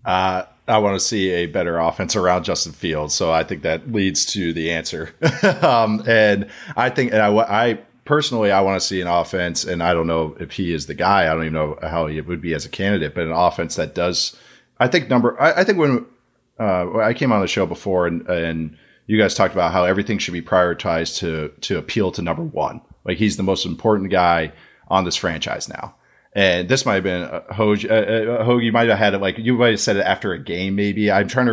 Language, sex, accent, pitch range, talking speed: English, male, American, 85-105 Hz, 240 wpm